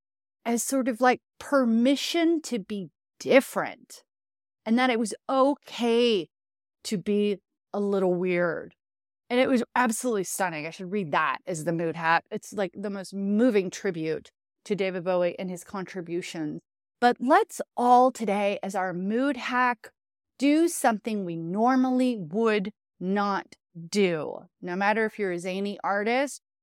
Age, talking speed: 30-49, 145 wpm